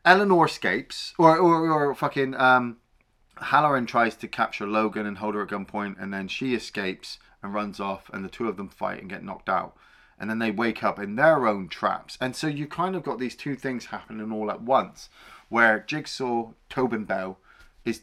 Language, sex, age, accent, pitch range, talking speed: English, male, 30-49, British, 110-160 Hz, 205 wpm